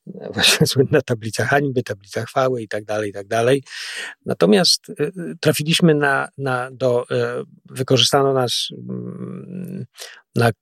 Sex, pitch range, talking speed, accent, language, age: male, 115-140 Hz, 105 wpm, native, Polish, 40-59